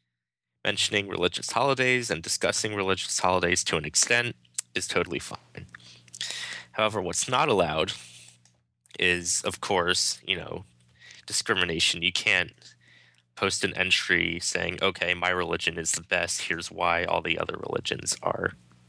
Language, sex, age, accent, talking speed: English, male, 20-39, American, 135 wpm